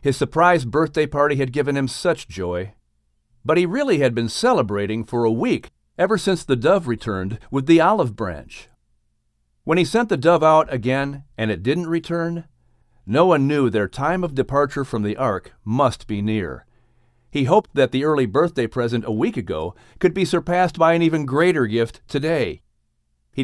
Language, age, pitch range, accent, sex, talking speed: English, 50-69, 115-165 Hz, American, male, 180 wpm